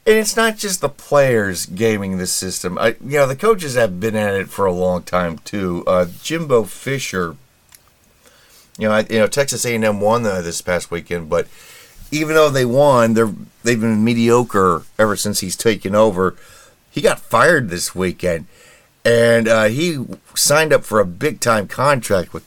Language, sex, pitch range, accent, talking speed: English, male, 95-120 Hz, American, 180 wpm